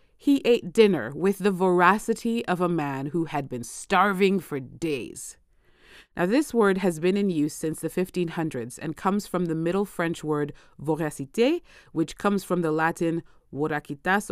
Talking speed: 165 wpm